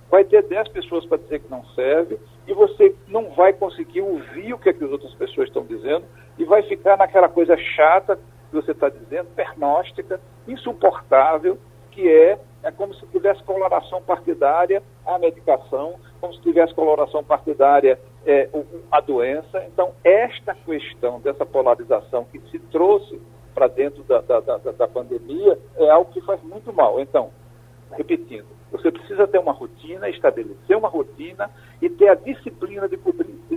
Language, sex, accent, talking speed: Portuguese, male, Brazilian, 165 wpm